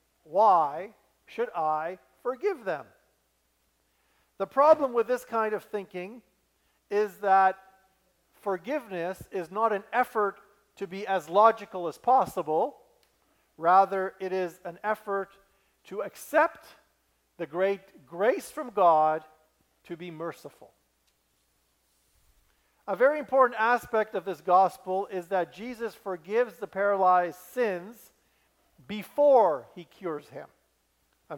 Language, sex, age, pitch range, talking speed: English, male, 50-69, 175-220 Hz, 115 wpm